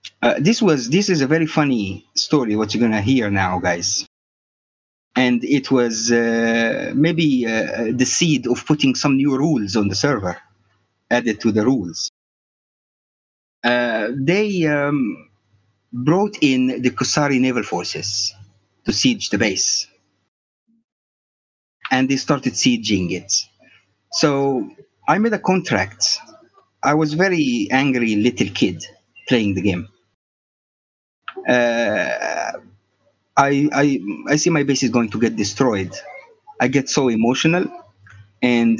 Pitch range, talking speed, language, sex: 105-145 Hz, 135 wpm, English, male